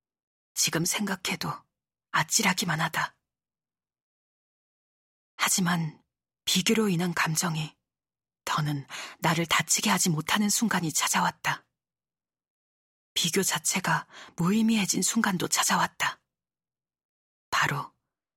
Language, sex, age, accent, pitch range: Korean, female, 40-59, native, 150-185 Hz